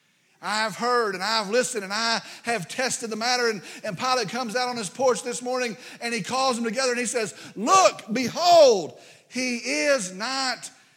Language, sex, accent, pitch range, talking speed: English, male, American, 200-270 Hz, 185 wpm